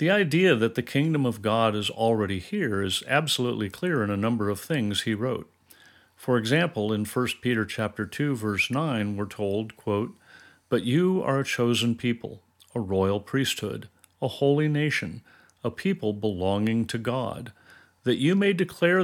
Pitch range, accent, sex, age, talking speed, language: 105-140 Hz, American, male, 40-59, 165 wpm, English